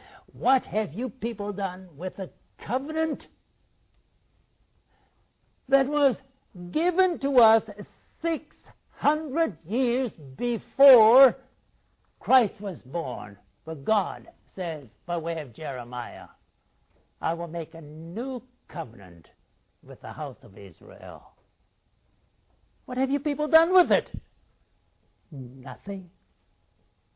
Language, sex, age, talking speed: English, male, 60-79, 100 wpm